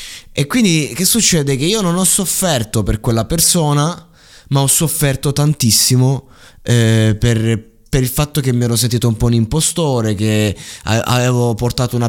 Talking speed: 170 wpm